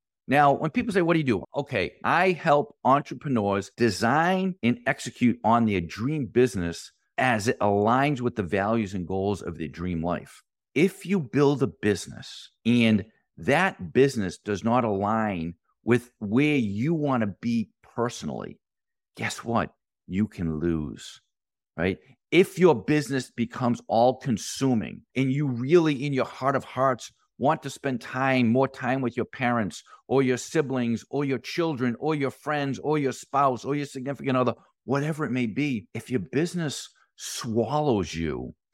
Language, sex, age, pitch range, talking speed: English, male, 50-69, 115-155 Hz, 160 wpm